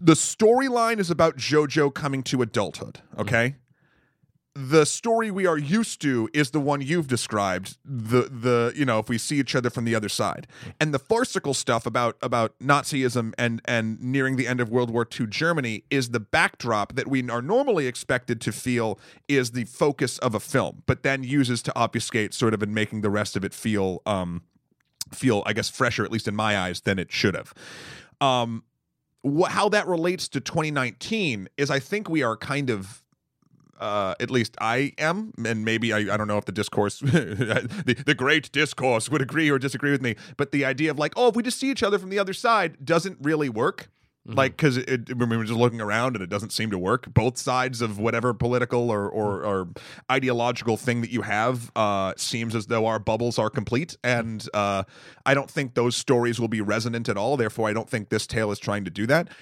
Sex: male